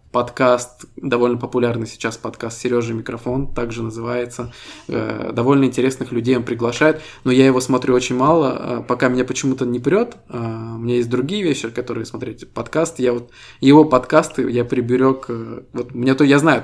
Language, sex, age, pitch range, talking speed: Russian, male, 20-39, 120-135 Hz, 160 wpm